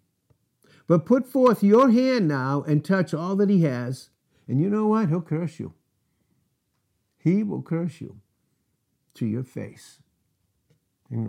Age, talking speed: 60-79, 145 wpm